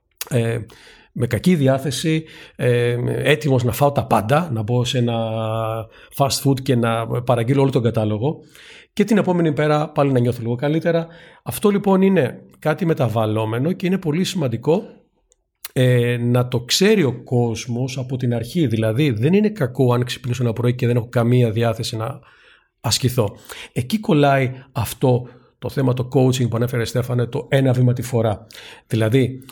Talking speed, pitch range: 165 wpm, 115-145 Hz